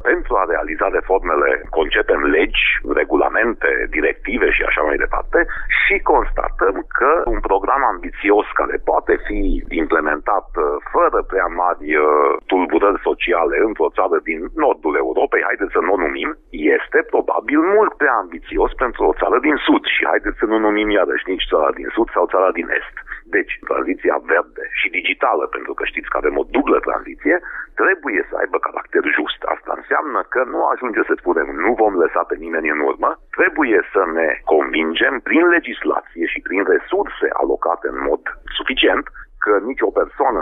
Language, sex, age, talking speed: Romanian, male, 40-59, 165 wpm